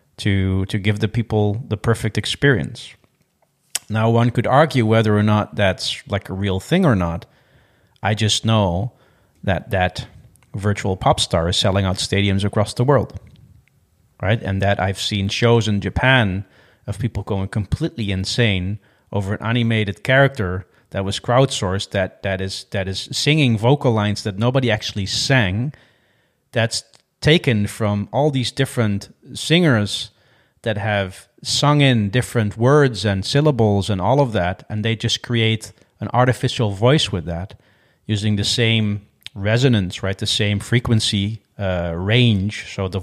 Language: English